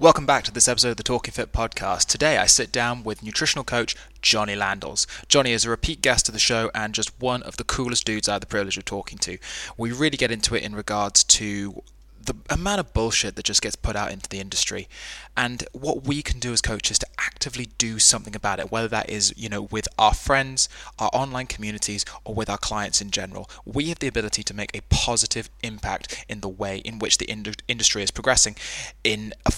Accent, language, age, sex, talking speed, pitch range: British, English, 20-39, male, 225 wpm, 105-120 Hz